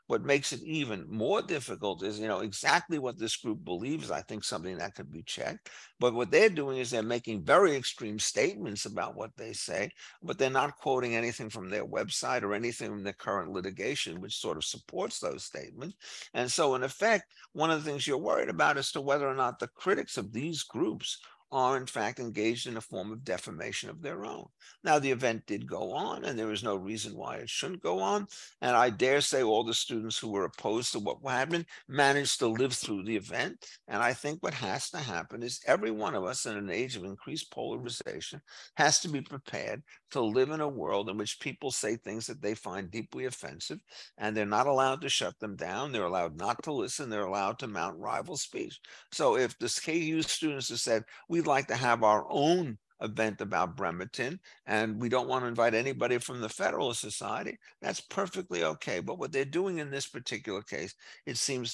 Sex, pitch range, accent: male, 110-140 Hz, American